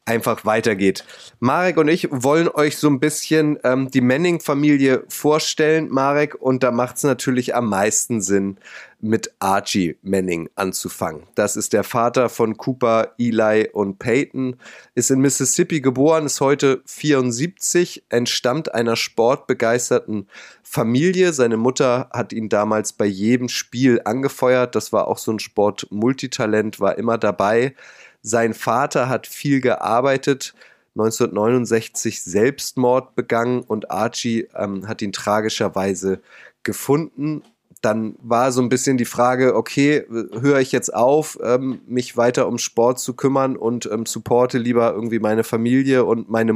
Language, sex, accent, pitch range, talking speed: German, male, German, 105-130 Hz, 140 wpm